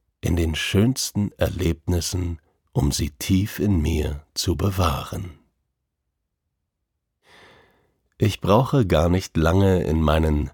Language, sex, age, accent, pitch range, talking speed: German, male, 50-69, German, 80-100 Hz, 100 wpm